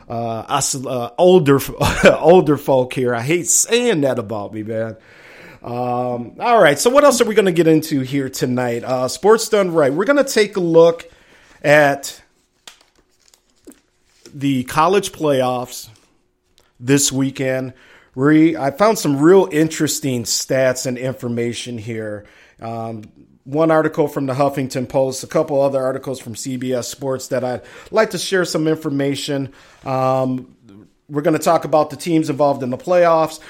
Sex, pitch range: male, 125-170 Hz